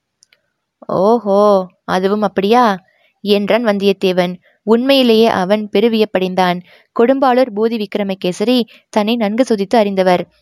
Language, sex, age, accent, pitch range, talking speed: Tamil, female, 20-39, native, 195-240 Hz, 100 wpm